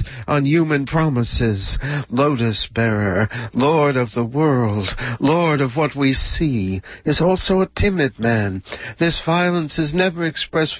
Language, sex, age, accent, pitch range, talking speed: English, male, 60-79, American, 115-150 Hz, 130 wpm